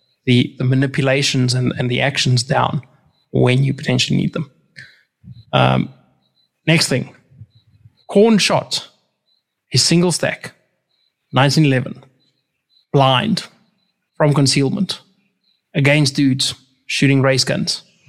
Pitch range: 130-155 Hz